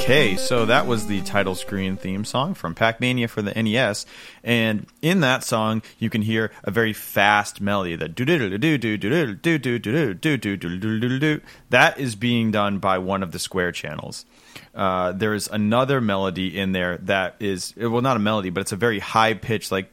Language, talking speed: English, 205 wpm